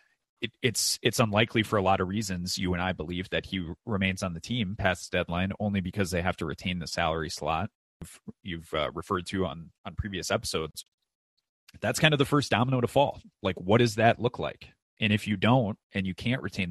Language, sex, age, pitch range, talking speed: English, male, 30-49, 85-110 Hz, 220 wpm